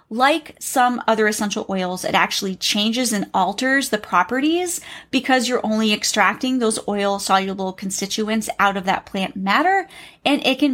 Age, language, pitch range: 30-49, English, 205-270 Hz